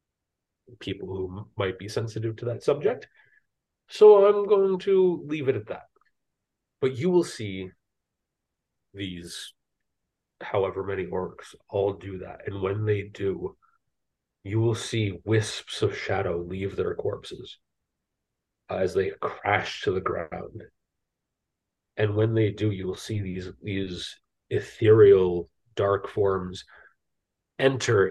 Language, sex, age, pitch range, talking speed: English, male, 30-49, 100-120 Hz, 125 wpm